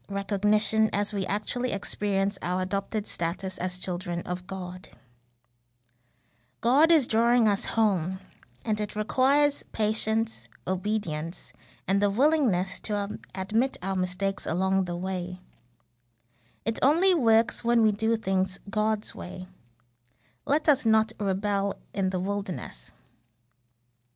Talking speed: 120 wpm